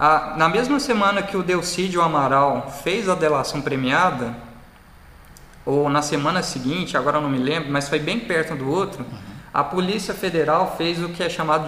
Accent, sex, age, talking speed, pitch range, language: Brazilian, male, 20-39, 175 wpm, 140-185 Hz, English